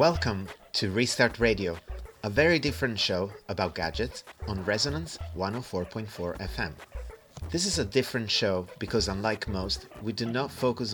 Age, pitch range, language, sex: 30-49, 95-115 Hz, English, male